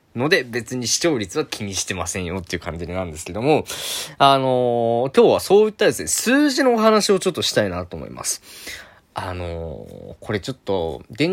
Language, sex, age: Japanese, male, 20-39